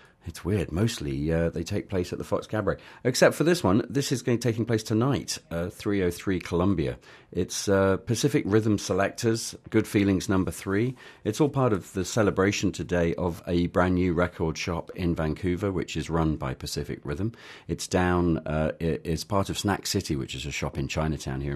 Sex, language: male, English